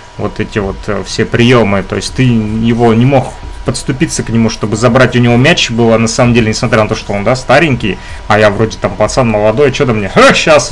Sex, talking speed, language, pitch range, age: male, 220 wpm, Russian, 110-145 Hz, 30-49